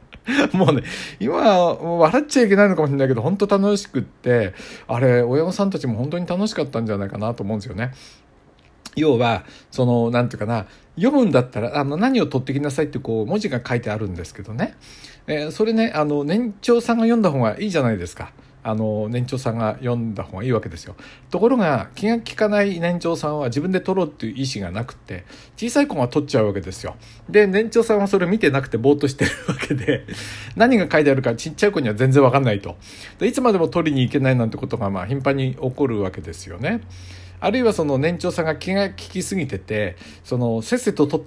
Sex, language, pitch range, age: male, Japanese, 110-170 Hz, 60-79